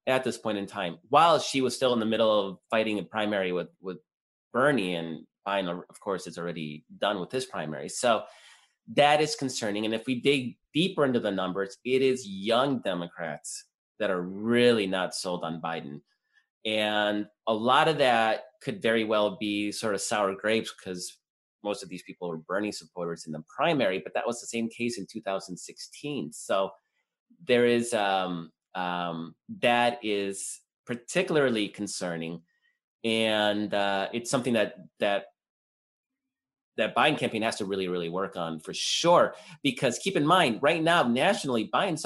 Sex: male